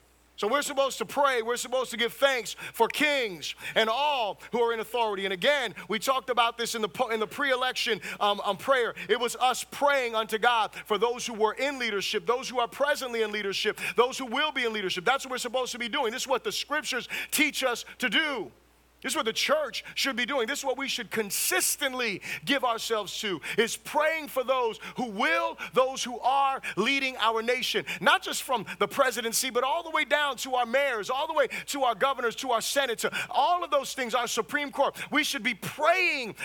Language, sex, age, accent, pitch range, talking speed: English, male, 30-49, American, 225-280 Hz, 220 wpm